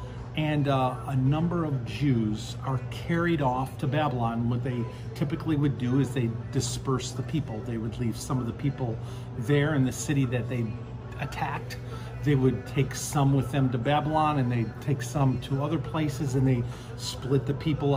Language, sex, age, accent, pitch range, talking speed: English, male, 50-69, American, 120-140 Hz, 185 wpm